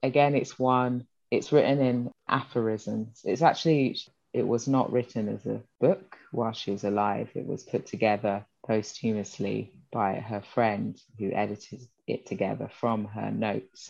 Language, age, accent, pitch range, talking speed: English, 20-39, British, 105-125 Hz, 150 wpm